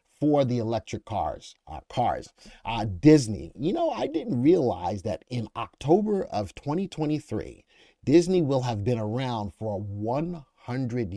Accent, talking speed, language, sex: American, 135 wpm, English, male